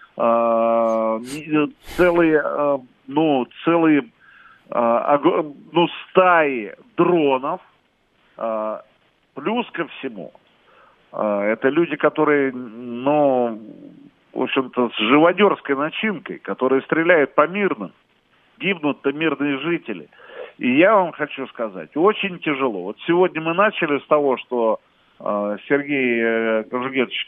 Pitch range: 125-165 Hz